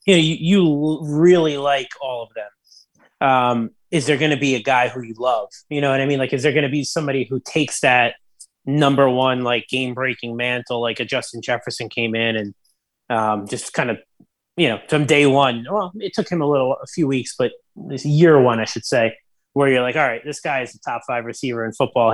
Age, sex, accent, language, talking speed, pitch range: 20-39, male, American, English, 235 wpm, 120-145 Hz